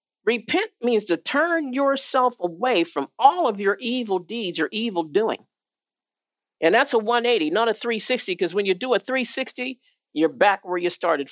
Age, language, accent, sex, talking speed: 50-69, English, American, male, 175 wpm